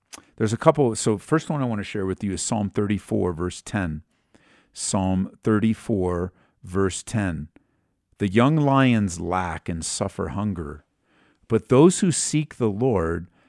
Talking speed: 150 wpm